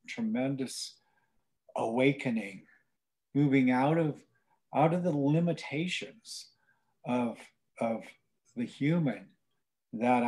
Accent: American